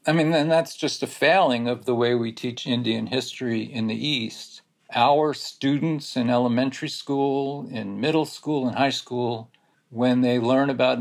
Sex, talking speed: male, 175 wpm